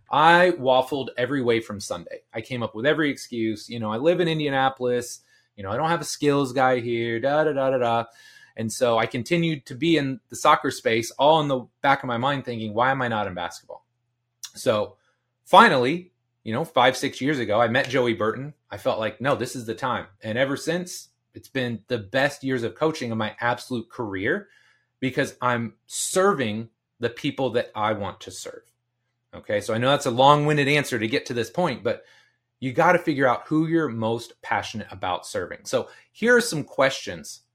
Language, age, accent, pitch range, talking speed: English, 30-49, American, 120-145 Hz, 210 wpm